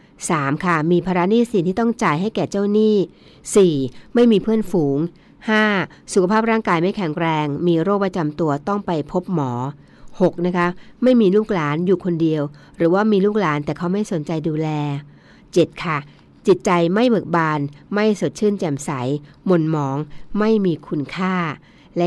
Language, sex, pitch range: Thai, female, 155-205 Hz